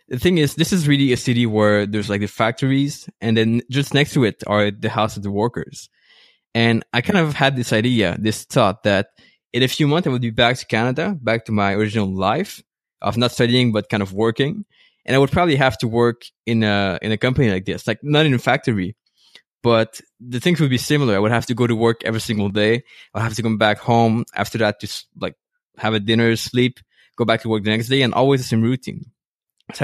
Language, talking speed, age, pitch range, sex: English, 240 wpm, 20-39, 110-130 Hz, male